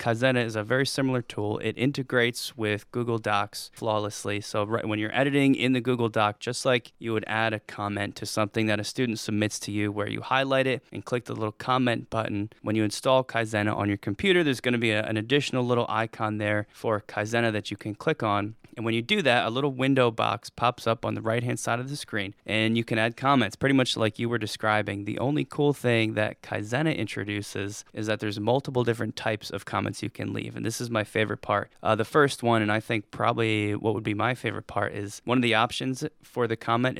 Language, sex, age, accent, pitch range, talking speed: English, male, 20-39, American, 105-125 Hz, 230 wpm